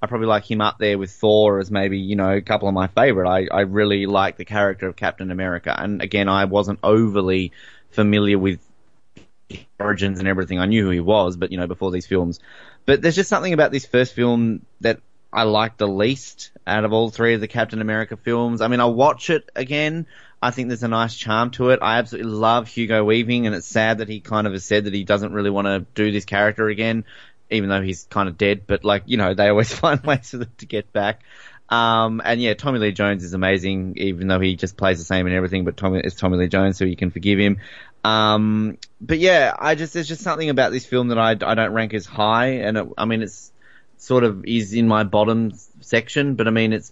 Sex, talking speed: male, 240 wpm